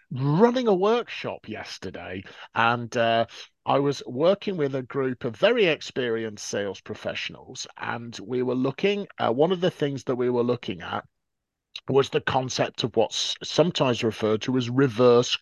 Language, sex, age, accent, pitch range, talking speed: English, male, 40-59, British, 110-140 Hz, 160 wpm